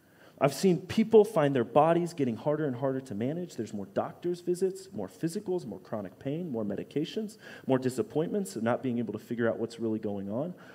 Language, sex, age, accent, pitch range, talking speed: English, male, 30-49, American, 120-185 Hz, 200 wpm